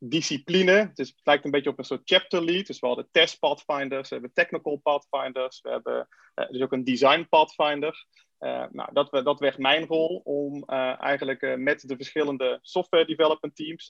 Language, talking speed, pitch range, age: Dutch, 170 wpm, 130-155 Hz, 30-49